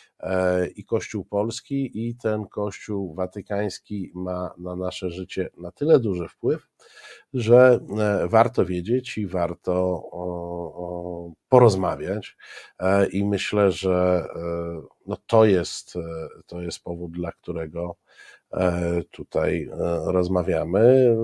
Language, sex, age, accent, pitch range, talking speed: Polish, male, 50-69, native, 90-110 Hz, 90 wpm